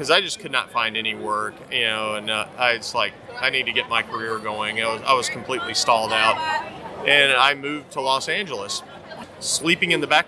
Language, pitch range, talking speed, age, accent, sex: English, 120-150 Hz, 220 wpm, 30-49, American, male